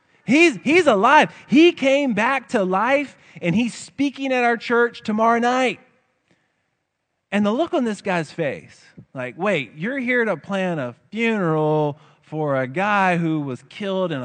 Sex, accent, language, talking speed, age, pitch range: male, American, English, 160 wpm, 30-49, 165-240 Hz